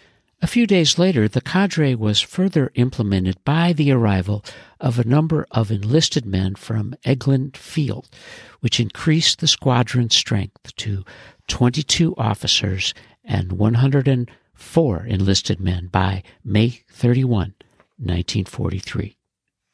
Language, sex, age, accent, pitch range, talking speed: English, male, 60-79, American, 100-140 Hz, 110 wpm